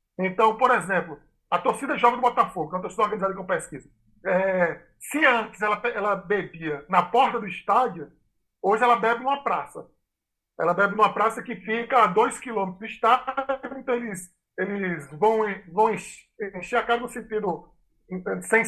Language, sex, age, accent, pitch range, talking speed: Portuguese, male, 20-39, Brazilian, 190-255 Hz, 165 wpm